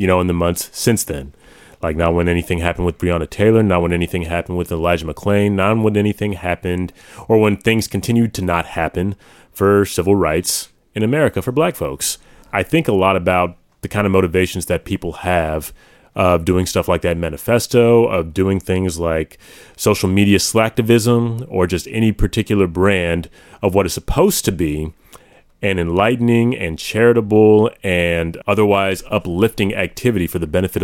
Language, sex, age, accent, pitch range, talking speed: English, male, 30-49, American, 85-110 Hz, 170 wpm